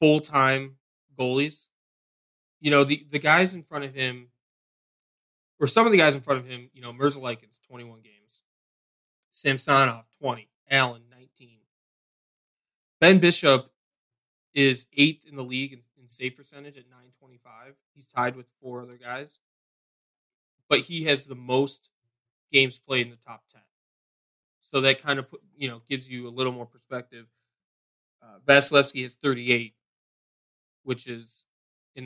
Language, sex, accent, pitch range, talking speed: English, male, American, 120-140 Hz, 145 wpm